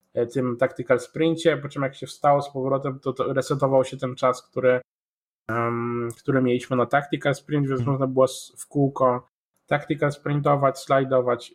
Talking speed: 155 wpm